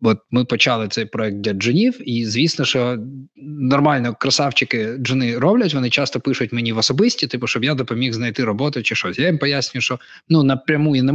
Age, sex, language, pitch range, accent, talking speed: 20-39, male, Ukrainian, 115-145 Hz, native, 195 wpm